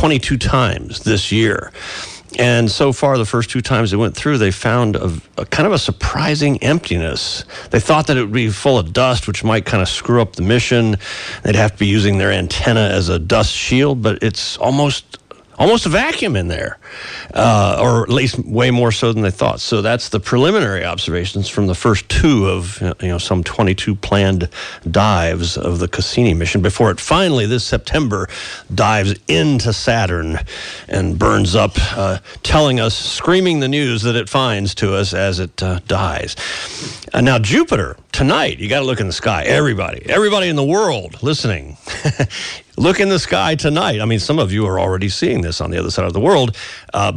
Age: 50-69